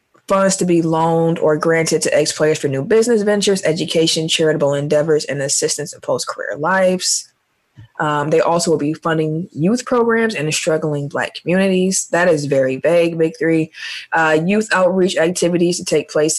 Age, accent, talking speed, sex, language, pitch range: 20-39, American, 170 wpm, female, English, 150-185 Hz